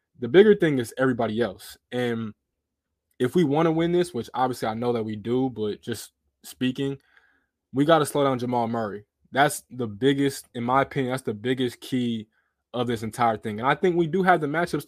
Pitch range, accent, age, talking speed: 115-140 Hz, American, 20-39, 210 wpm